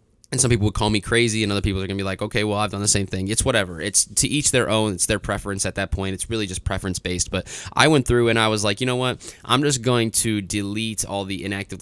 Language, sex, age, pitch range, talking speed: English, male, 20-39, 95-110 Hz, 295 wpm